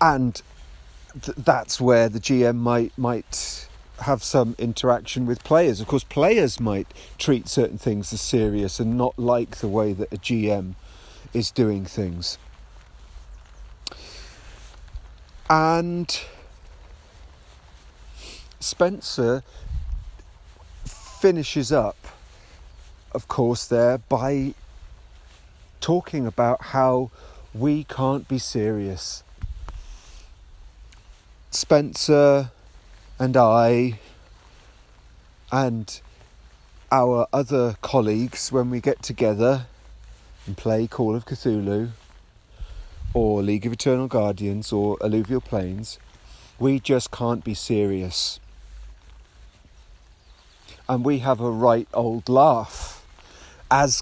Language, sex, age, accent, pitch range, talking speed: English, male, 40-59, British, 80-125 Hz, 95 wpm